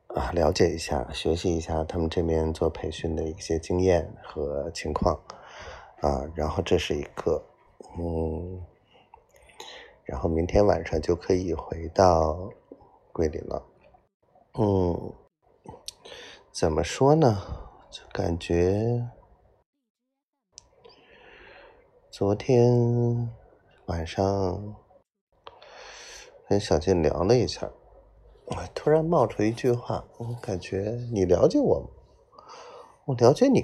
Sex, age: male, 30-49